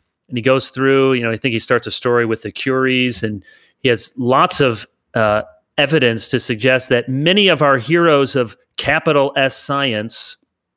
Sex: male